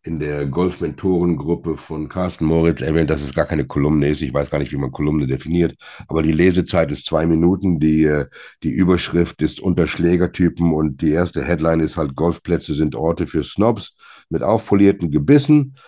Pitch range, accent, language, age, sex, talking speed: 80-100 Hz, German, German, 60-79, male, 175 wpm